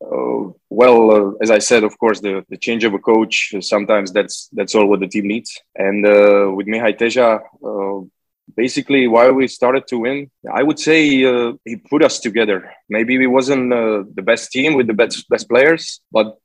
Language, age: Romanian, 20-39